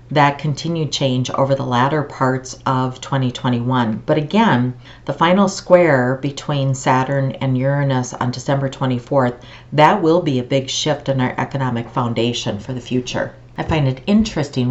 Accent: American